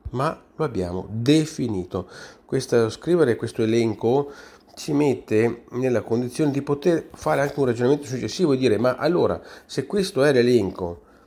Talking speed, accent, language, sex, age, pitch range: 140 wpm, native, Italian, male, 40-59, 95-140 Hz